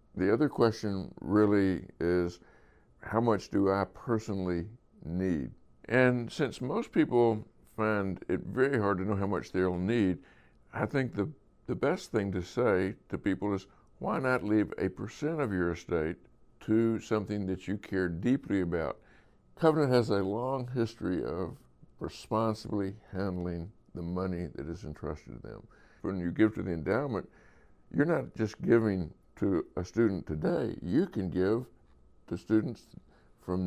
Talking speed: 155 wpm